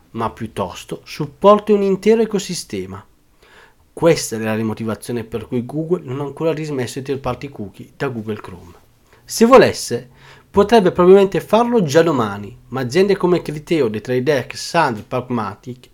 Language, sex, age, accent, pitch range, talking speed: Italian, male, 40-59, native, 125-195 Hz, 145 wpm